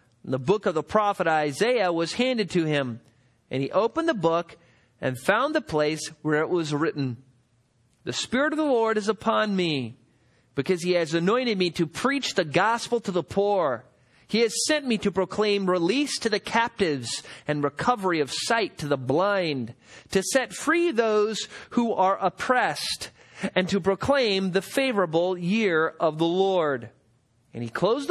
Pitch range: 145-215 Hz